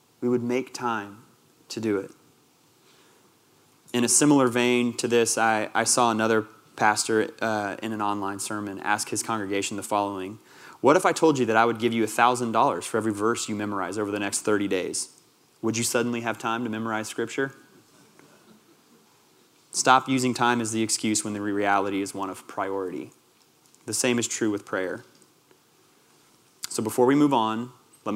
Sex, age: male, 30-49